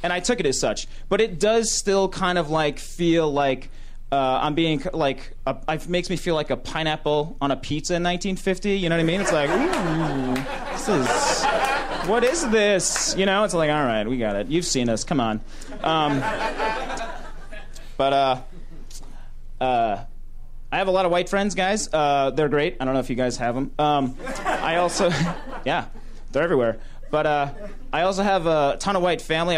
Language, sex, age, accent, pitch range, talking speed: English, male, 30-49, American, 135-175 Hz, 195 wpm